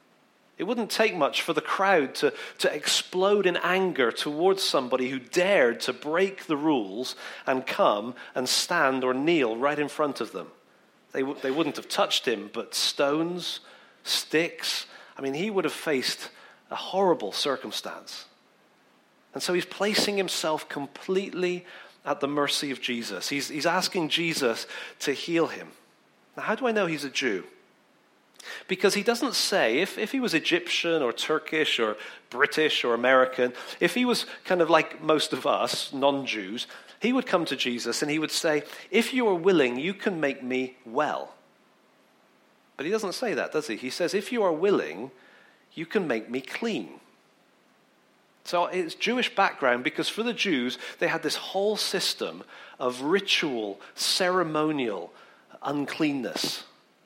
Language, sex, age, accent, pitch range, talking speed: English, male, 40-59, British, 140-200 Hz, 160 wpm